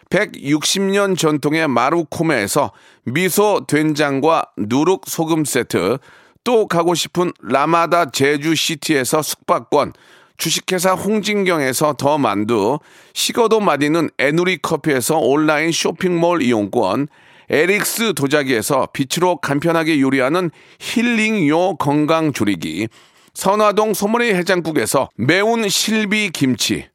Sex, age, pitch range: male, 40-59, 155-200 Hz